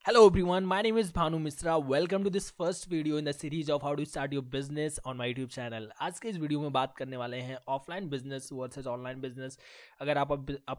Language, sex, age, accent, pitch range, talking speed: Hindi, male, 20-39, native, 145-175 Hz, 235 wpm